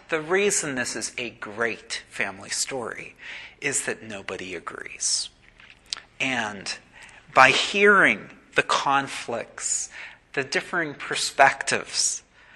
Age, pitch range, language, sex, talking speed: 40-59, 150-200 Hz, English, male, 95 wpm